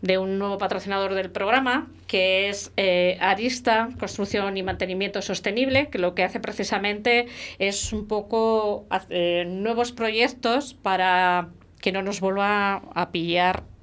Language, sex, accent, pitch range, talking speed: Spanish, female, Spanish, 180-210 Hz, 140 wpm